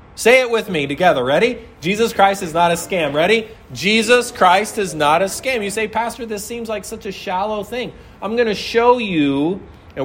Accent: American